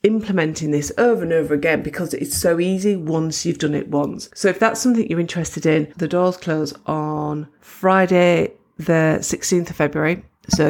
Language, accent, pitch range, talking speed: English, British, 150-190 Hz, 180 wpm